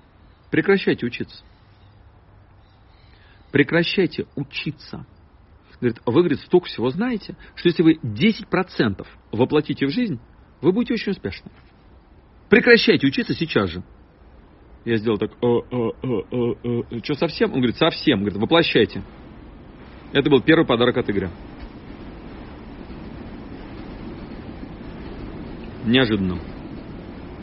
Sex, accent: male, native